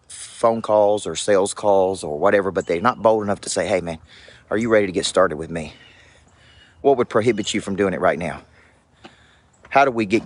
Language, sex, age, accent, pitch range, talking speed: English, male, 40-59, American, 95-115 Hz, 215 wpm